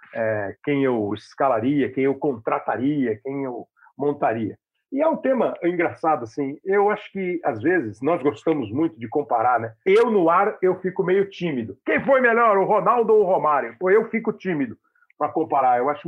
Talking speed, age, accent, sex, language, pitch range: 185 wpm, 50-69, Brazilian, male, Portuguese, 135-210 Hz